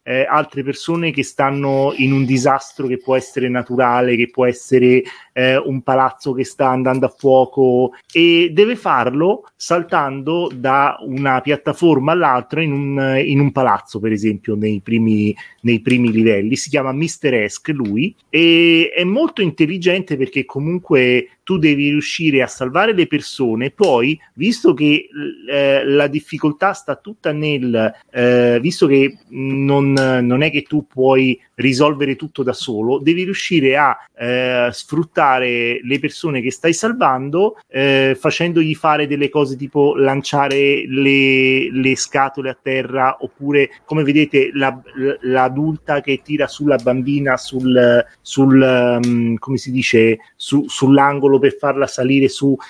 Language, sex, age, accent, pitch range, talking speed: Italian, male, 30-49, native, 130-155 Hz, 140 wpm